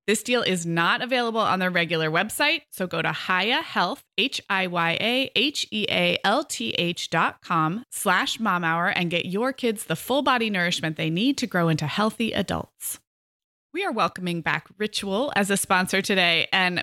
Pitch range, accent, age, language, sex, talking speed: 175-250 Hz, American, 20-39, English, female, 160 wpm